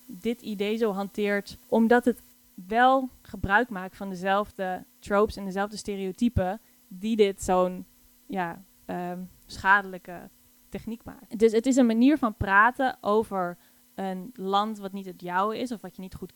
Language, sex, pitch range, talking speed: Dutch, female, 185-230 Hz, 150 wpm